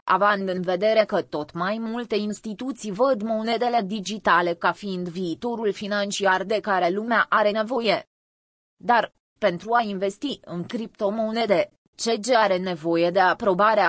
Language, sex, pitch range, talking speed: Romanian, female, 190-235 Hz, 135 wpm